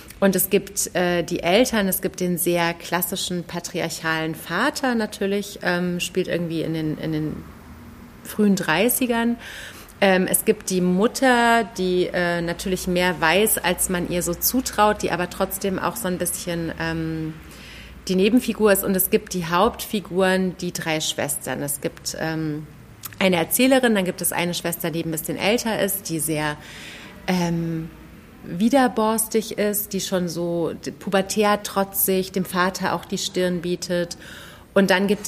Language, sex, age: German, female, 30-49